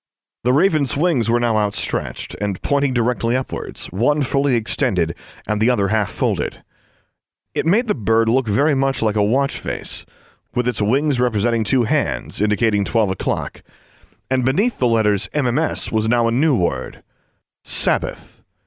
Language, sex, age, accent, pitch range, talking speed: English, male, 40-59, American, 105-155 Hz, 160 wpm